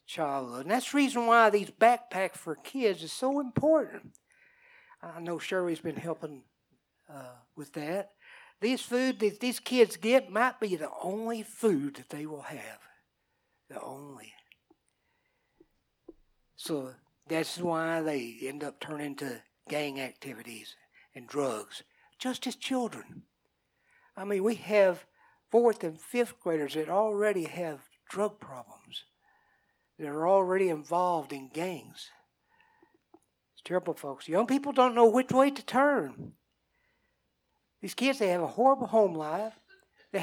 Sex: male